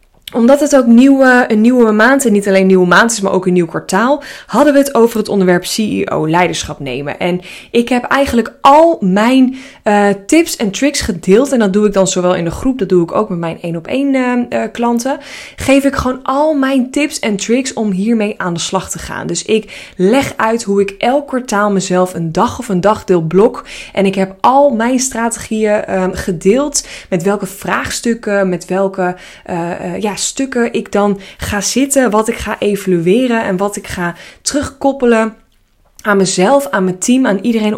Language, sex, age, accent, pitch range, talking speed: Dutch, female, 20-39, Dutch, 185-250 Hz, 200 wpm